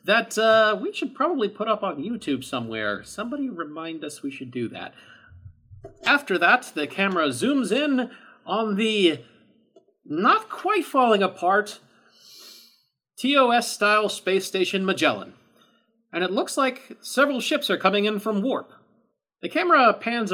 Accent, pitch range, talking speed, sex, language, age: American, 165-240 Hz, 130 wpm, male, English, 40-59